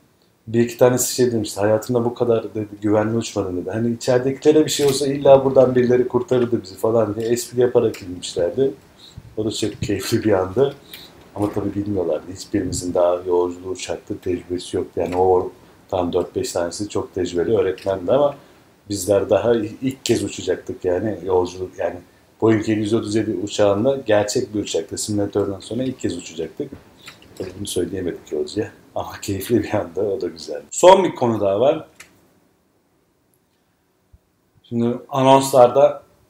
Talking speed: 150 wpm